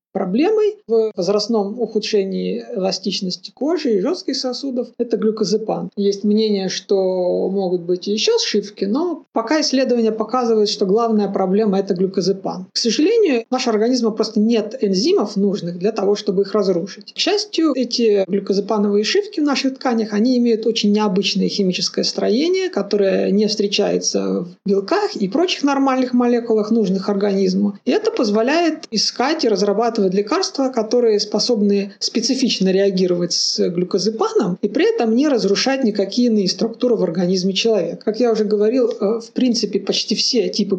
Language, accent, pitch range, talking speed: Russian, native, 200-250 Hz, 150 wpm